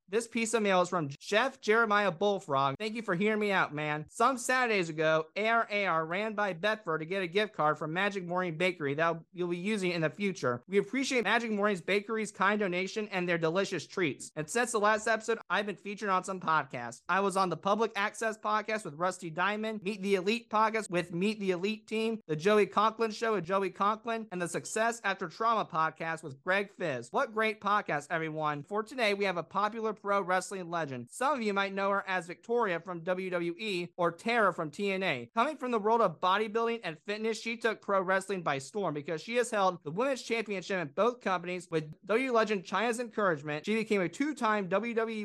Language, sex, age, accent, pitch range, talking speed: English, male, 30-49, American, 180-225 Hz, 210 wpm